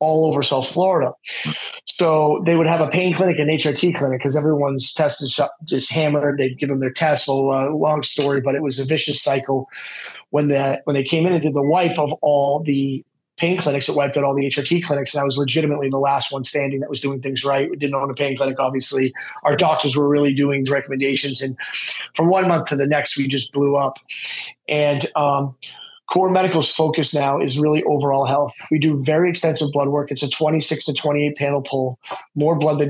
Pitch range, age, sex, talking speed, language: 140-155 Hz, 30-49, male, 220 wpm, English